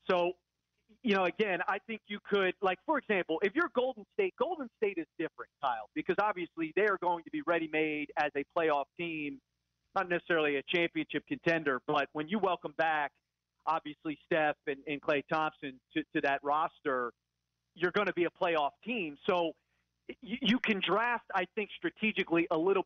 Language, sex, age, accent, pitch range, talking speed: English, male, 40-59, American, 145-195 Hz, 180 wpm